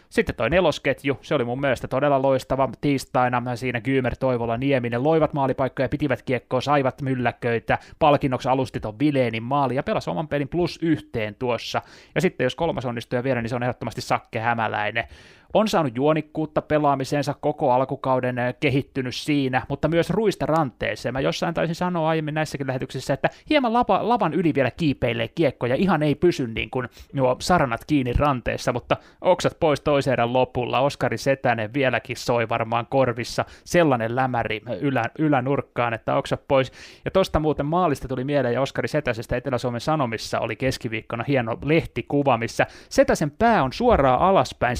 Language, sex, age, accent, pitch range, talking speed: Finnish, male, 20-39, native, 120-150 Hz, 155 wpm